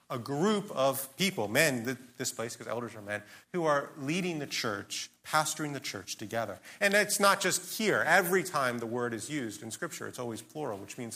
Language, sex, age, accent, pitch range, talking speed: English, male, 40-59, American, 120-185 Hz, 205 wpm